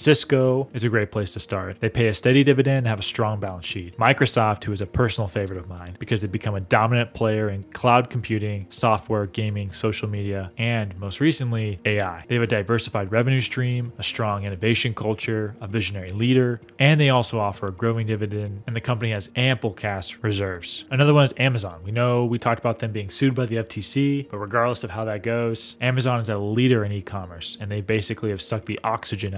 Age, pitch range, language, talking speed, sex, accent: 10-29, 100-120 Hz, English, 210 wpm, male, American